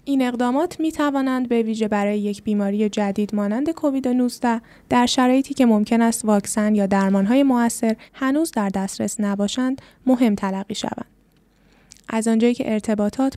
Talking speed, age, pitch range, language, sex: 145 wpm, 10-29, 215-260 Hz, Persian, female